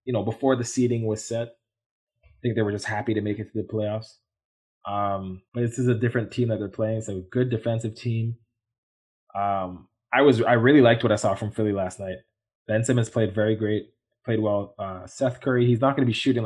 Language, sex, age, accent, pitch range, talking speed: English, male, 20-39, American, 100-115 Hz, 235 wpm